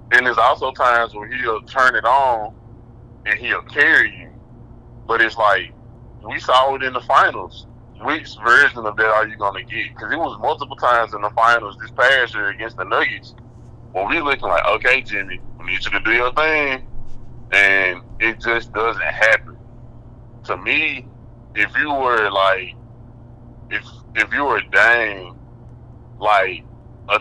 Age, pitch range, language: 20-39, 110-120 Hz, English